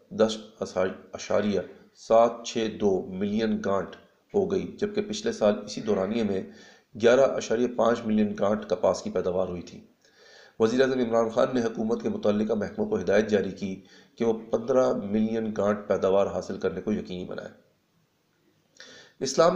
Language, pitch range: Urdu, 105-125 Hz